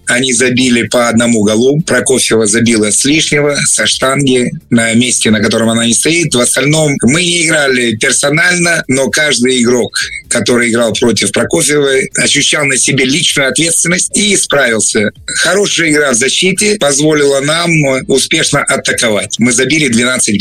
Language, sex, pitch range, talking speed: Russian, male, 115-145 Hz, 145 wpm